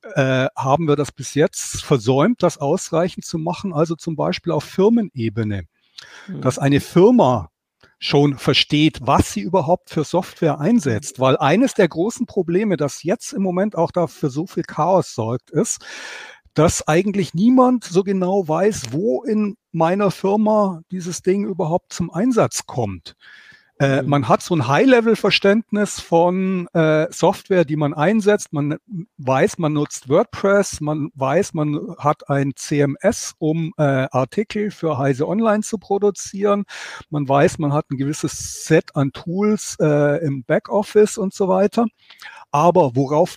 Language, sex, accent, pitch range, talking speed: German, male, German, 145-195 Hz, 145 wpm